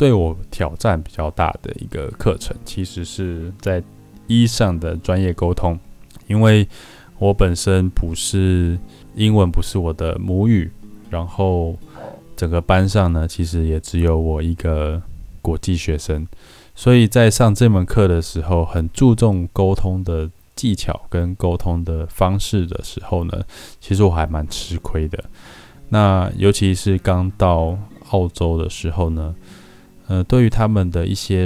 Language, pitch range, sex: Chinese, 85-100 Hz, male